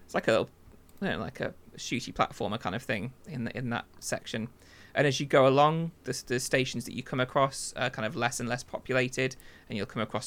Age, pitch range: 20-39, 115-130 Hz